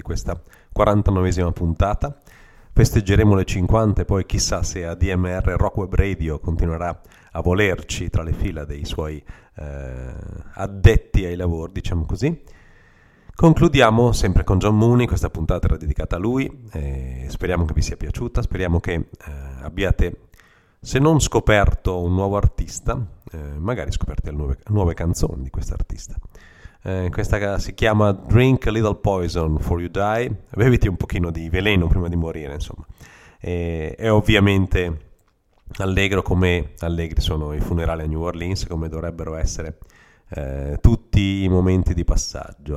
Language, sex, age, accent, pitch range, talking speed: Italian, male, 40-59, native, 85-100 Hz, 145 wpm